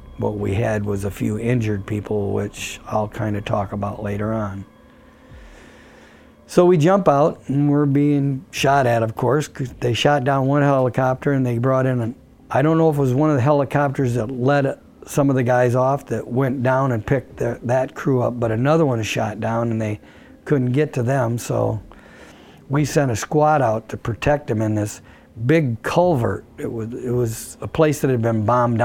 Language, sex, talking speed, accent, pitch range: English, male, 205 wpm, American, 105-135 Hz